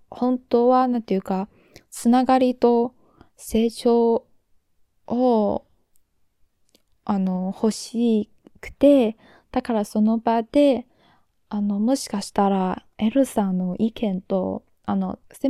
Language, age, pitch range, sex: Japanese, 20-39, 195-245 Hz, female